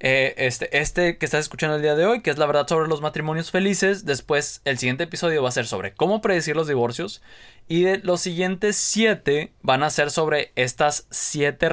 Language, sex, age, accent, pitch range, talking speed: Spanish, male, 20-39, Mexican, 120-170 Hz, 210 wpm